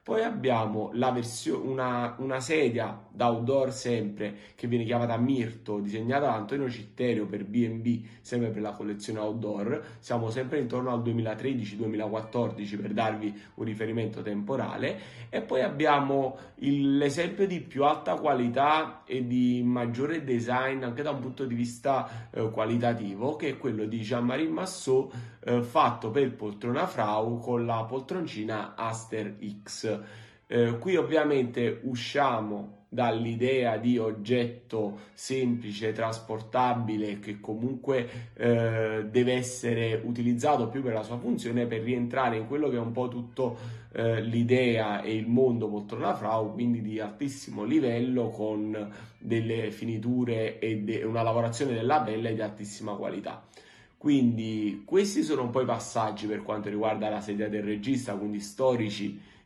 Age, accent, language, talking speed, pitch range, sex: 30-49, native, Italian, 140 wpm, 110-125 Hz, male